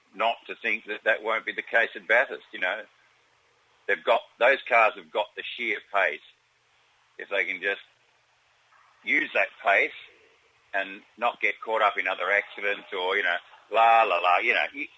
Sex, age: male, 50-69